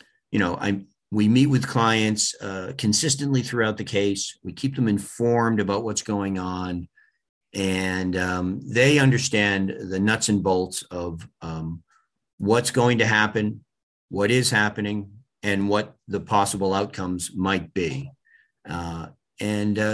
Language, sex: English, male